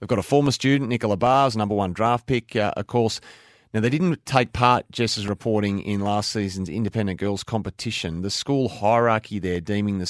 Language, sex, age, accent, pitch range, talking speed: English, male, 30-49, Australian, 100-120 Hz, 195 wpm